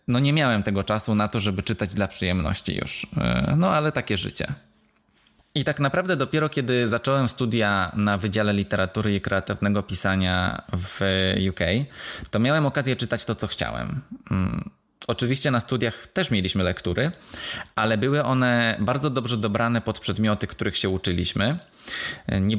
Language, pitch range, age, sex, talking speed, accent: Polish, 100-125 Hz, 20-39, male, 150 wpm, native